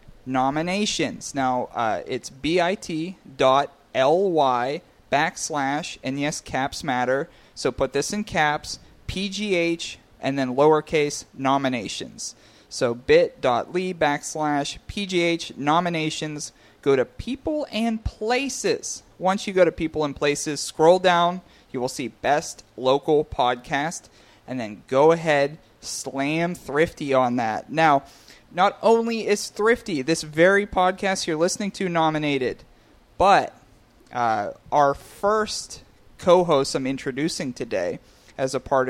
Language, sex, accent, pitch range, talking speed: English, male, American, 135-190 Hz, 115 wpm